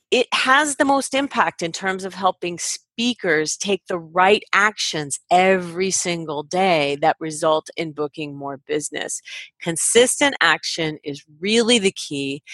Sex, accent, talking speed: female, American, 140 wpm